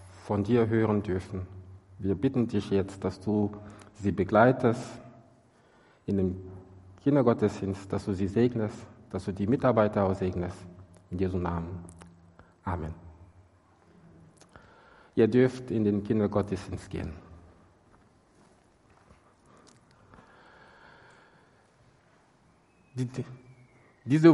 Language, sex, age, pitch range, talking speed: German, male, 50-69, 100-125 Hz, 90 wpm